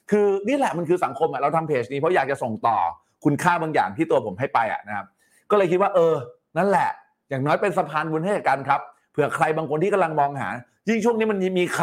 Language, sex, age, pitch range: Thai, male, 30-49, 150-200 Hz